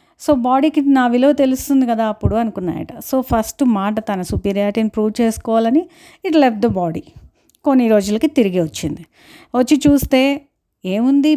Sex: female